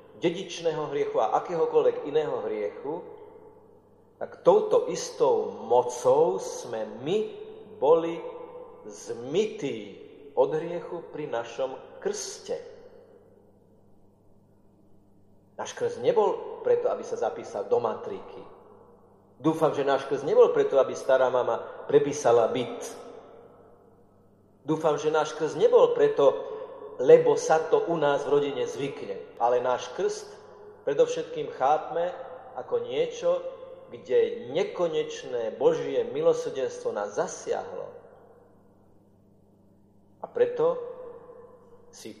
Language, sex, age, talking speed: Slovak, male, 40-59, 100 wpm